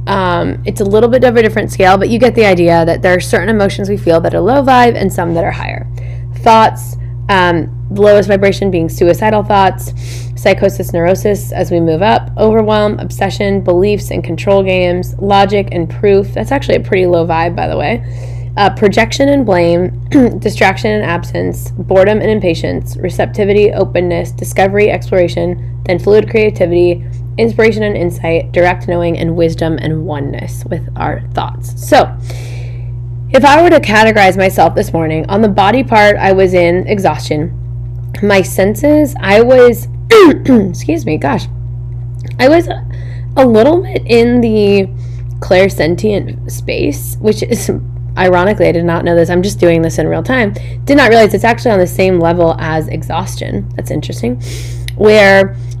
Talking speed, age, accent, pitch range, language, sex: 165 wpm, 10-29, American, 120-195 Hz, English, female